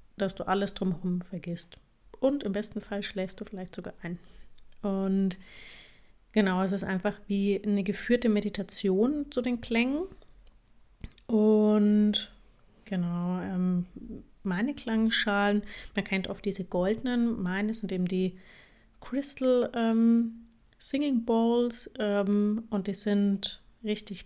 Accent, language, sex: German, German, female